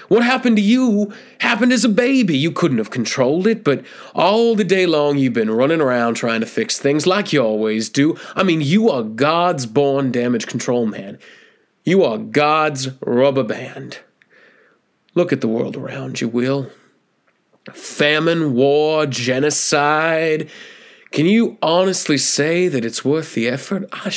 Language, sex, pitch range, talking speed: English, male, 130-200 Hz, 160 wpm